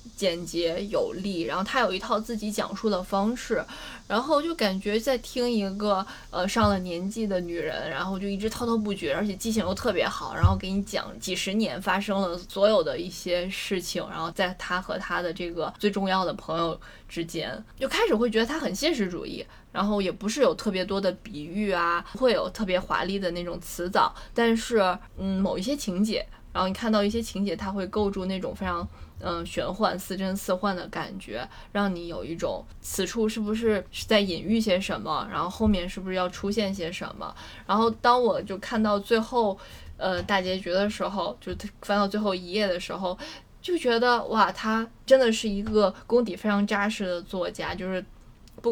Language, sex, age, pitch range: Chinese, female, 20-39, 180-215 Hz